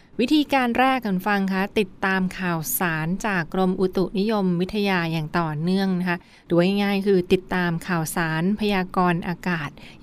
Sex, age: female, 20-39